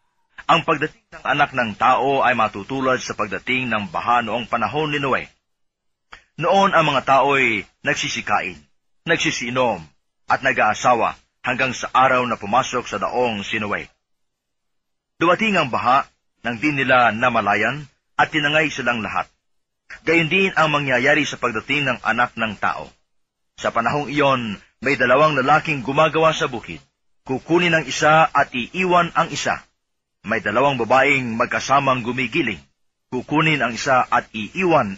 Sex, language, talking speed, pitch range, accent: male, Filipino, 130 wpm, 115-155 Hz, native